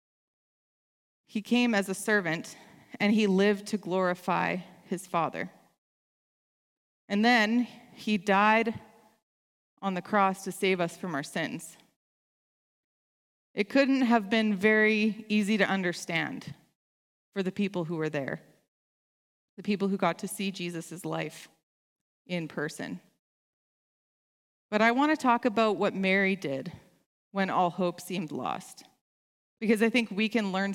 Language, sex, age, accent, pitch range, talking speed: English, female, 30-49, American, 185-220 Hz, 135 wpm